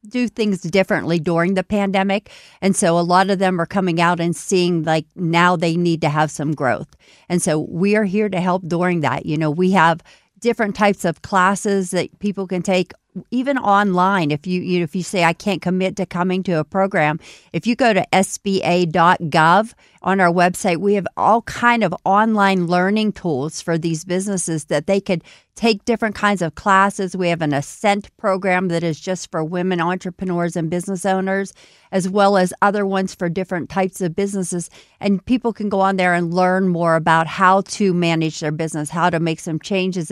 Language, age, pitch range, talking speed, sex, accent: English, 50-69, 170-200 Hz, 200 wpm, female, American